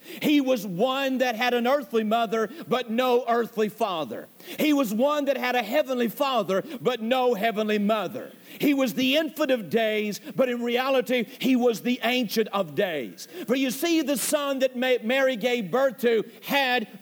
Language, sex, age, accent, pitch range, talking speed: English, male, 50-69, American, 230-270 Hz, 175 wpm